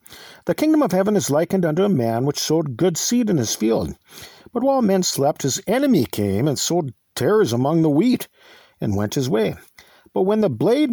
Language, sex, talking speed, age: English, male, 205 wpm, 50-69